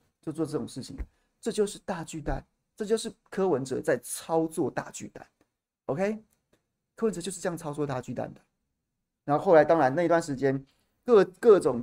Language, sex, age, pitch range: Chinese, male, 30-49, 140-210 Hz